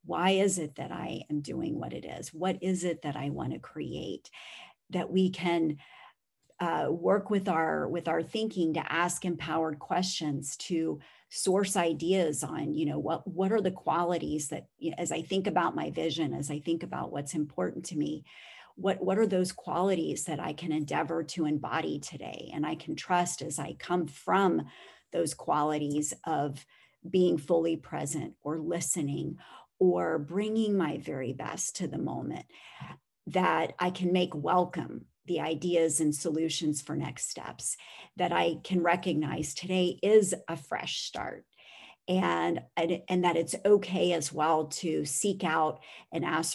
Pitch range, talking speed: 155-180 Hz, 165 wpm